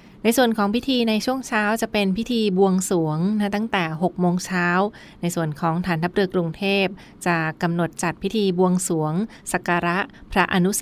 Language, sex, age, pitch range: Thai, female, 20-39, 170-190 Hz